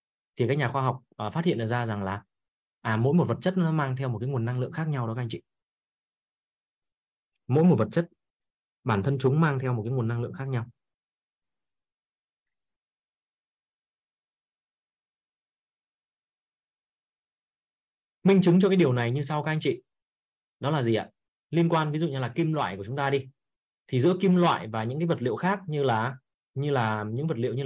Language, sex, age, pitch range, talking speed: Vietnamese, male, 20-39, 125-160 Hz, 195 wpm